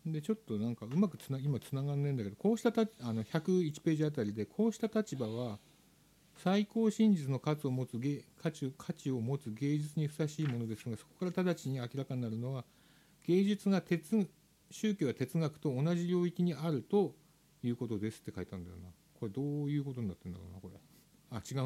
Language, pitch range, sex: Japanese, 115-175 Hz, male